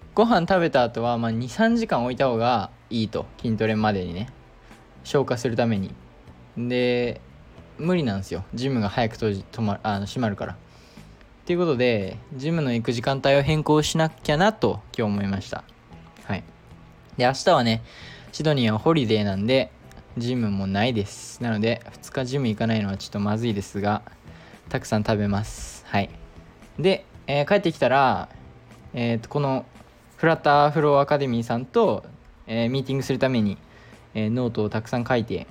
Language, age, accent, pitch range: Japanese, 20-39, native, 110-140 Hz